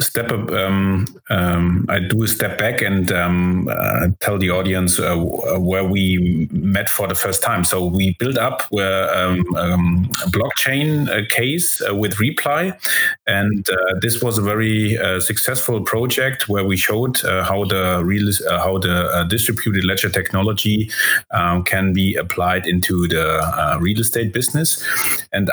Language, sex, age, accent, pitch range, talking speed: English, male, 30-49, German, 90-110 Hz, 165 wpm